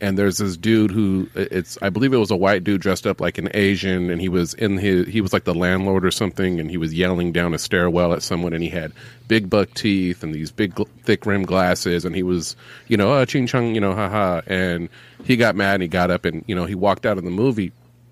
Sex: male